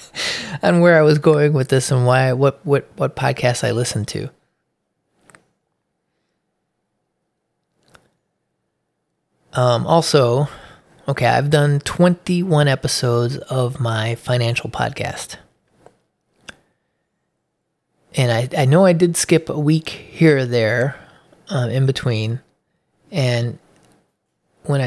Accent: American